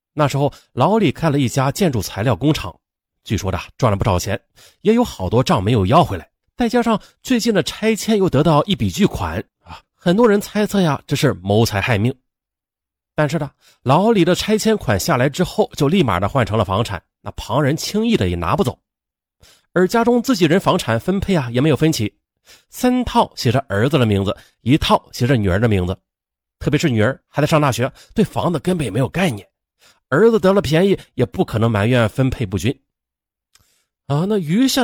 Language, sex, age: Chinese, male, 30-49